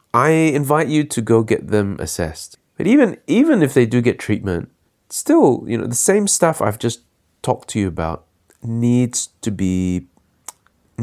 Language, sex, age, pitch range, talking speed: English, male, 30-49, 85-115 Hz, 170 wpm